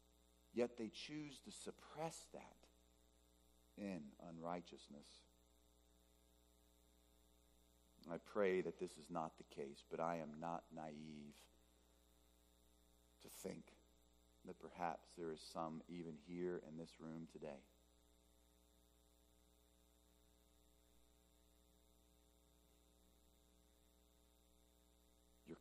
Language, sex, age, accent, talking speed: English, male, 40-59, American, 80 wpm